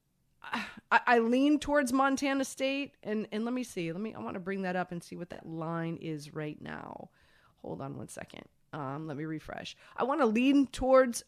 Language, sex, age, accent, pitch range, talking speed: English, female, 30-49, American, 190-240 Hz, 215 wpm